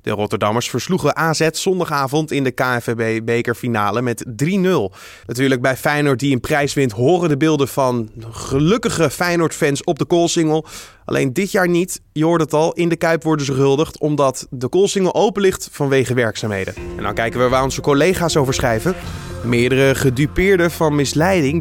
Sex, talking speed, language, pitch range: male, 165 wpm, Dutch, 120-160 Hz